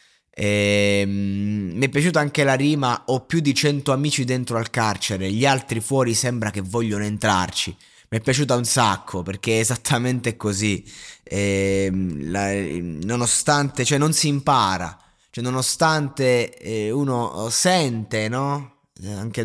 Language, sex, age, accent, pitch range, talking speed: Italian, male, 20-39, native, 105-130 Hz, 135 wpm